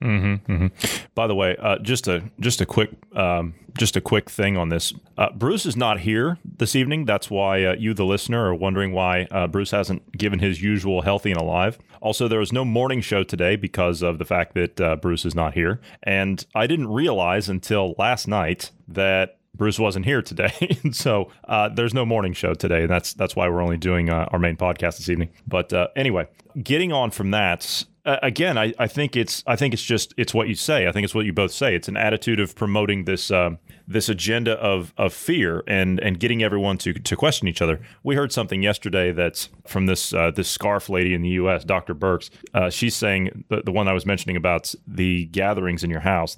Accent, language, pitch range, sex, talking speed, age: American, English, 90-115 Hz, male, 220 wpm, 30-49